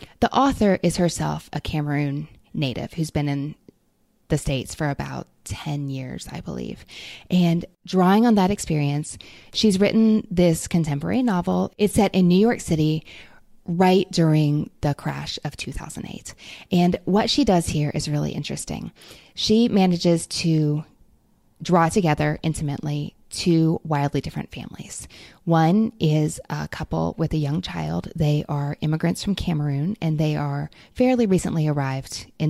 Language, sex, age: English, female, 20-39